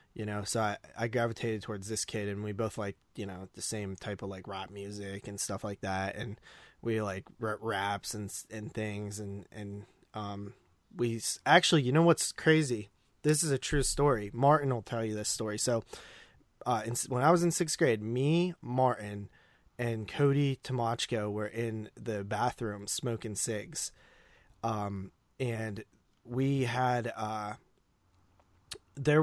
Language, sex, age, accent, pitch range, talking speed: English, male, 20-39, American, 105-130 Hz, 165 wpm